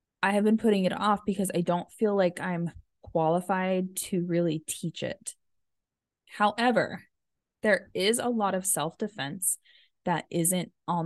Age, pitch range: 20-39, 165-220 Hz